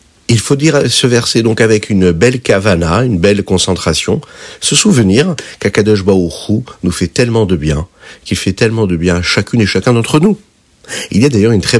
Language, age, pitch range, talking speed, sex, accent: French, 50-69, 85-115 Hz, 195 wpm, male, French